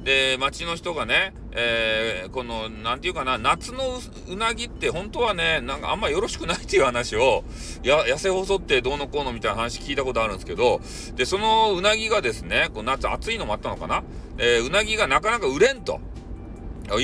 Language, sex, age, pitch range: Japanese, male, 40-59, 125-200 Hz